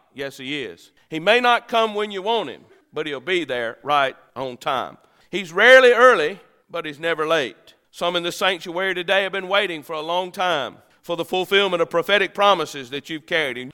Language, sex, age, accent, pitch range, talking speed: English, male, 50-69, American, 185-250 Hz, 205 wpm